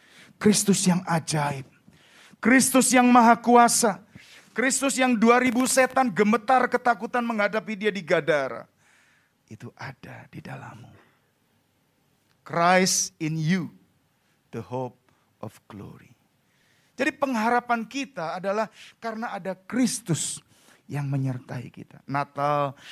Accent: native